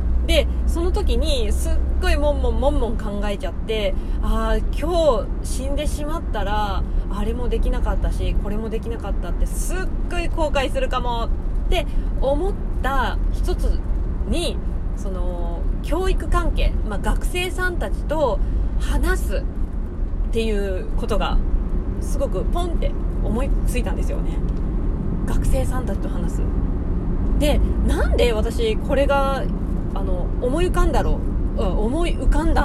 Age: 20-39